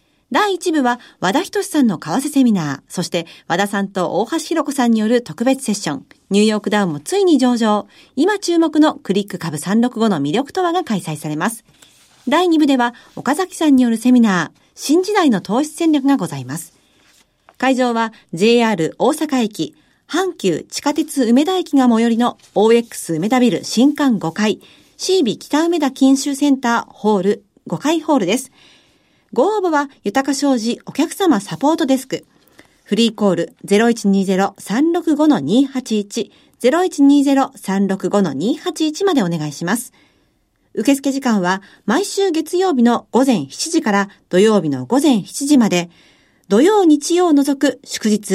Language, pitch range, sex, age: Japanese, 205-295 Hz, female, 40-59